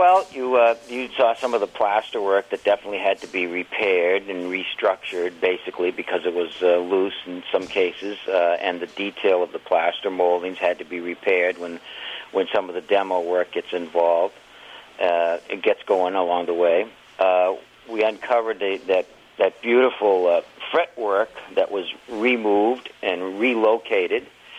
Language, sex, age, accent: English, male, 50-69, American